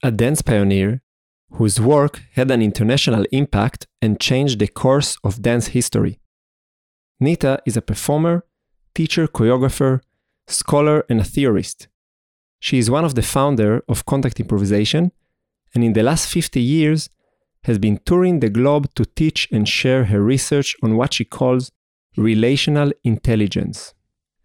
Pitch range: 110-140 Hz